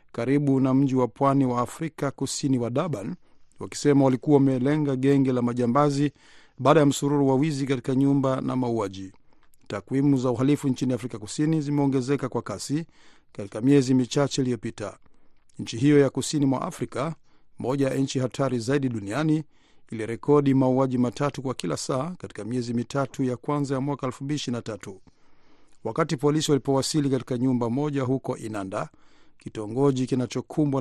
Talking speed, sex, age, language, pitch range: 145 wpm, male, 50-69, Swahili, 125-145 Hz